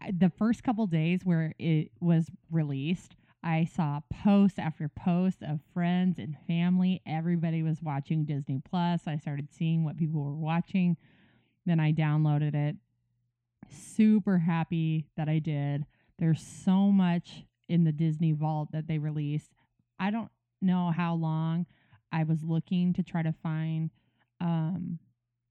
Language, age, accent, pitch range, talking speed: English, 20-39, American, 150-175 Hz, 145 wpm